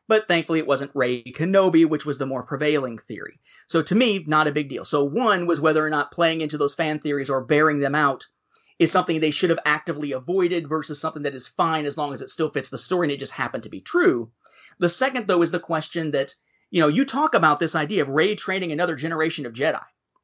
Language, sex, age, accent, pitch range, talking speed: English, male, 30-49, American, 150-215 Hz, 245 wpm